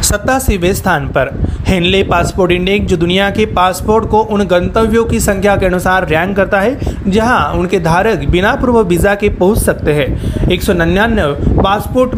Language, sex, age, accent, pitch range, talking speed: Marathi, male, 30-49, native, 180-215 Hz, 135 wpm